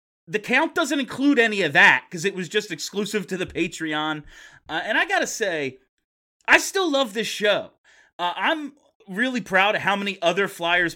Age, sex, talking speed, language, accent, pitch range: 30-49, male, 185 wpm, English, American, 155-230 Hz